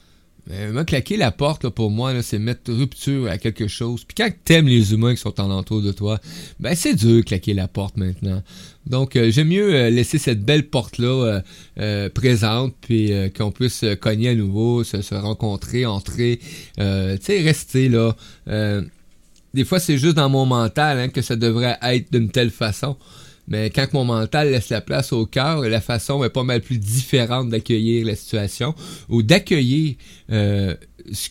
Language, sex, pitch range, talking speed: French, male, 105-125 Hz, 190 wpm